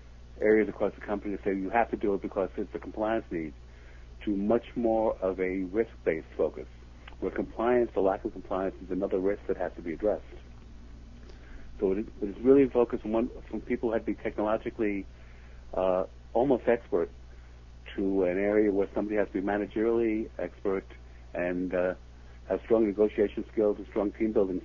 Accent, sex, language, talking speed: American, male, English, 175 wpm